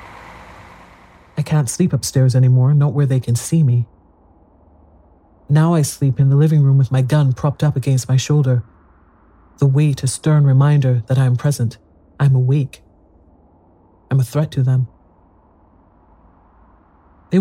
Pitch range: 85-145 Hz